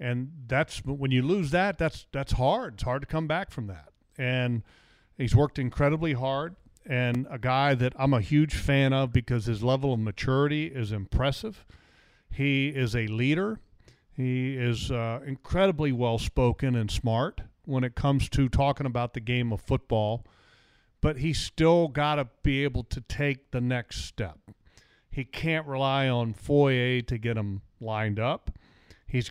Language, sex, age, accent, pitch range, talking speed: English, male, 40-59, American, 120-150 Hz, 165 wpm